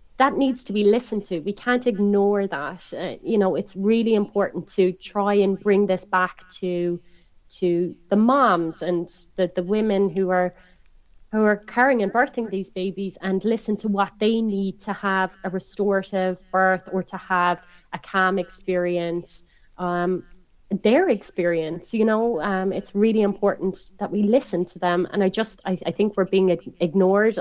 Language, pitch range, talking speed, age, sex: English, 185-215 Hz, 175 wpm, 30-49, female